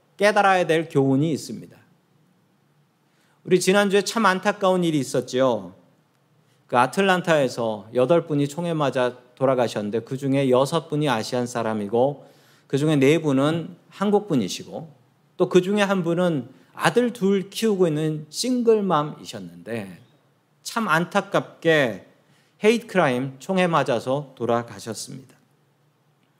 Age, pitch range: 40-59, 135-185 Hz